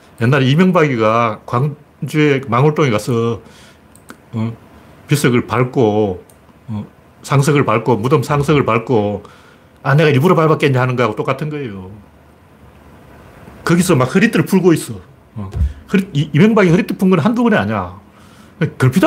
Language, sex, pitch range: Korean, male, 110-175 Hz